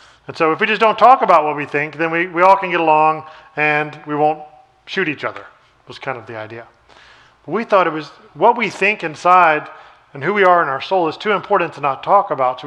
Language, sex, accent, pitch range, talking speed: English, male, American, 145-175 Hz, 245 wpm